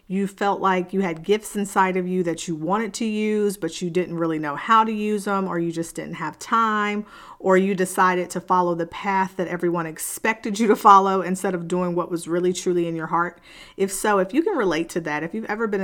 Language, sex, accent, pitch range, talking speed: English, female, American, 170-205 Hz, 245 wpm